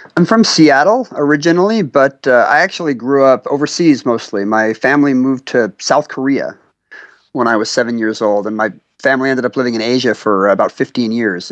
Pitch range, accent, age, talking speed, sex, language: 110-140 Hz, American, 30-49, 190 wpm, male, English